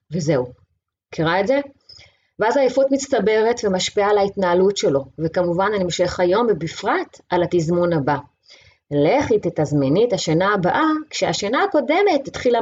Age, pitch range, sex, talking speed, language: 30-49, 160-240 Hz, female, 130 wpm, Hebrew